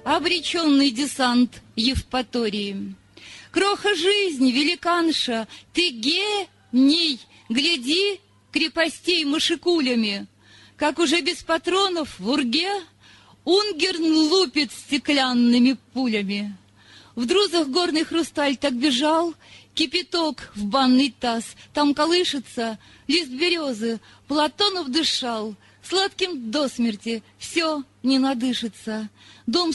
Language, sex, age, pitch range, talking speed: Russian, female, 30-49, 255-335 Hz, 90 wpm